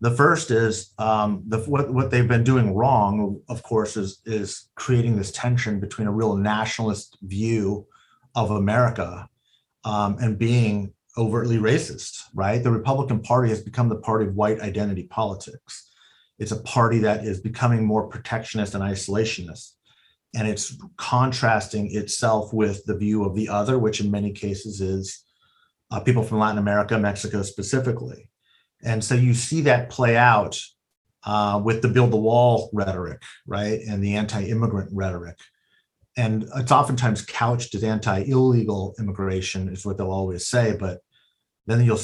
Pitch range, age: 100-120 Hz, 40-59